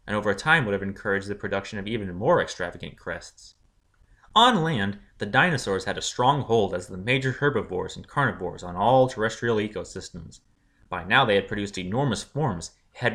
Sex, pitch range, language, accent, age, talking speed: male, 95-120 Hz, English, American, 20-39, 180 wpm